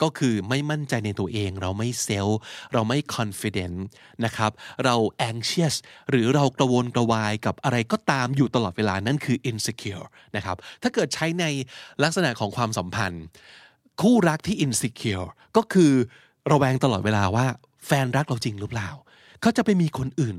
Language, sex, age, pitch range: Thai, male, 20-39, 115-165 Hz